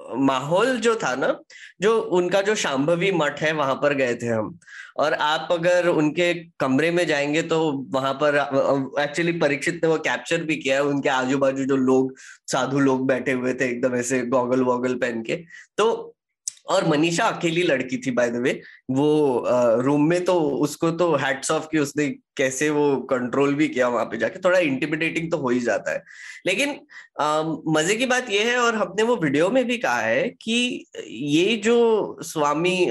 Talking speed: 185 wpm